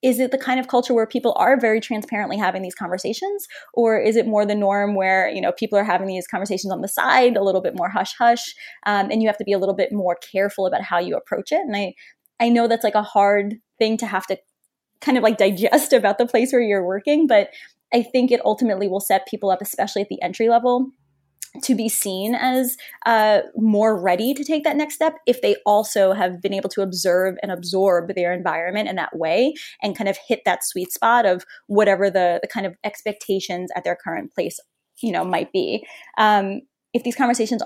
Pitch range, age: 190-235 Hz, 20-39